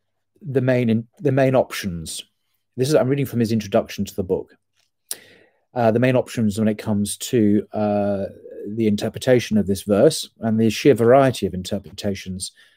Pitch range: 100-120 Hz